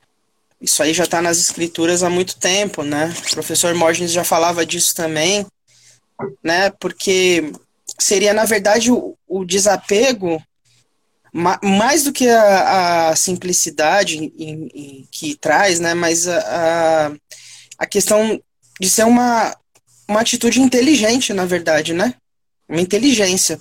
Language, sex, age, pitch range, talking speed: Portuguese, male, 20-39, 155-195 Hz, 130 wpm